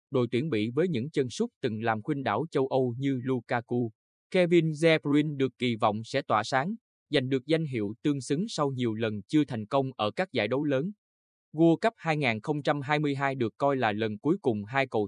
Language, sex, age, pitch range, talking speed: Vietnamese, male, 20-39, 115-150 Hz, 205 wpm